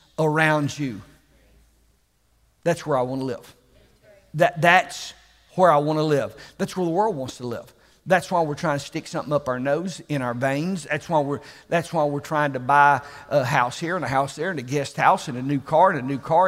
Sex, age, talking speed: male, 50-69, 220 wpm